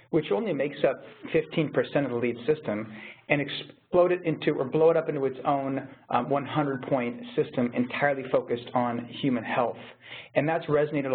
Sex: male